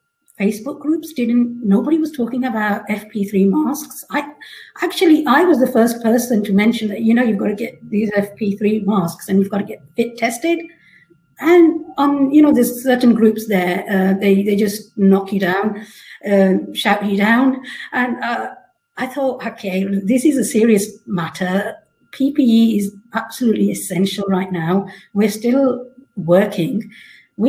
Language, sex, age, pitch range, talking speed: English, female, 50-69, 200-255 Hz, 160 wpm